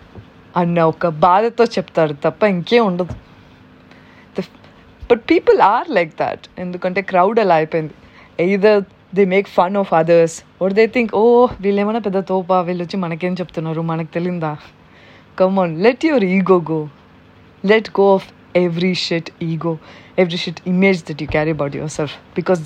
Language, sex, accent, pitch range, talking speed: Telugu, female, native, 170-215 Hz, 150 wpm